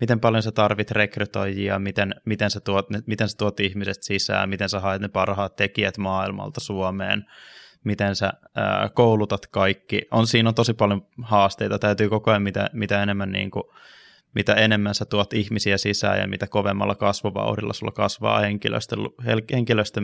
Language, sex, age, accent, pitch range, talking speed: Finnish, male, 20-39, native, 100-110 Hz, 160 wpm